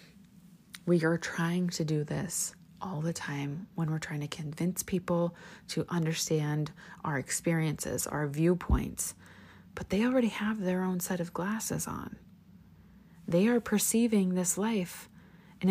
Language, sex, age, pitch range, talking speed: English, female, 30-49, 170-210 Hz, 140 wpm